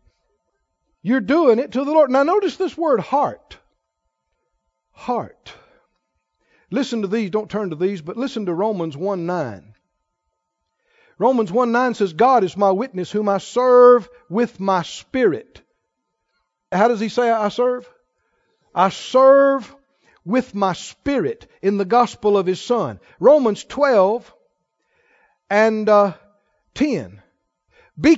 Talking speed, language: 130 wpm, English